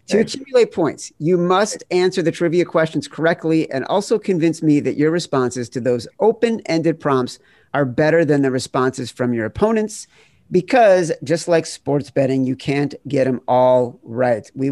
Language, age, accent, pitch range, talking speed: English, 50-69, American, 130-165 Hz, 165 wpm